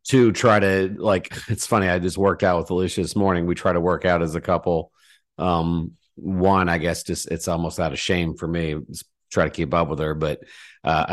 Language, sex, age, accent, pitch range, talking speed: English, male, 40-59, American, 85-105 Hz, 230 wpm